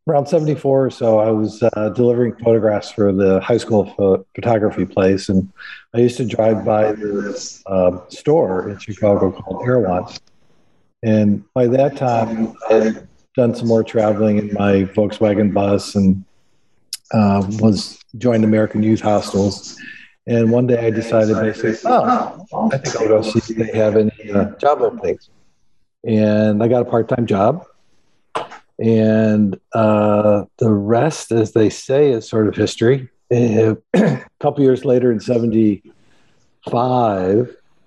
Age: 50-69